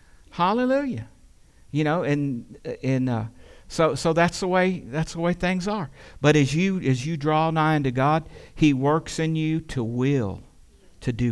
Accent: American